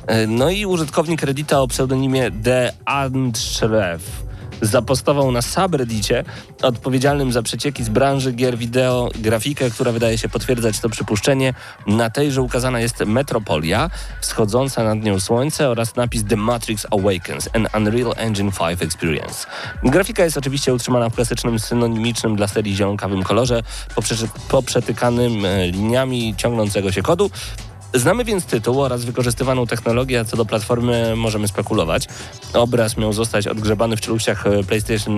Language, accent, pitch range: Polish, native, 110-130 Hz